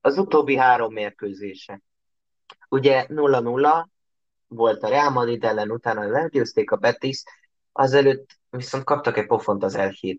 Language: Hungarian